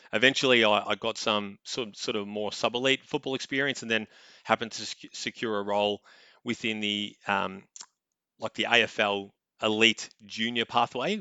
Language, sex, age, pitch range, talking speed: English, male, 30-49, 100-115 Hz, 140 wpm